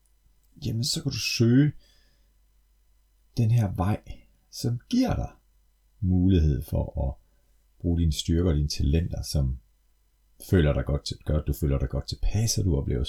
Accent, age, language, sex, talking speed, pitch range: native, 40-59, Danish, male, 155 wpm, 75-100 Hz